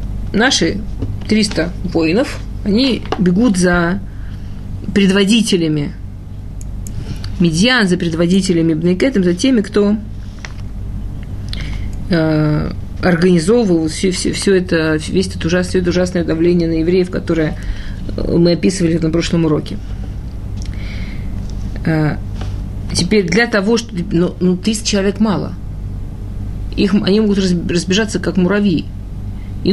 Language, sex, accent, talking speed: Russian, female, native, 100 wpm